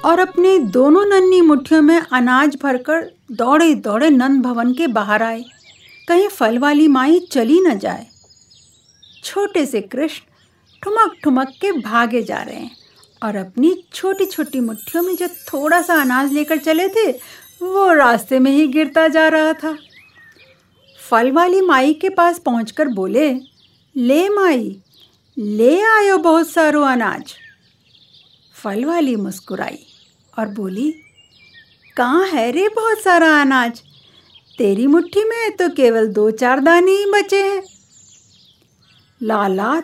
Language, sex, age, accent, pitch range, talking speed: Hindi, female, 50-69, native, 245-355 Hz, 135 wpm